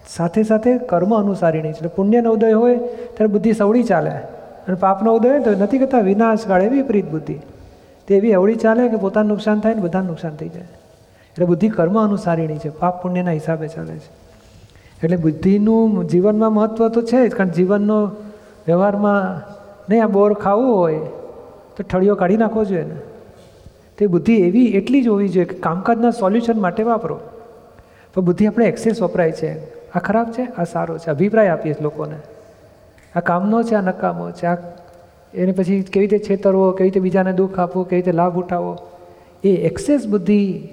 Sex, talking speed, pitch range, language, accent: male, 170 wpm, 175-220 Hz, Gujarati, native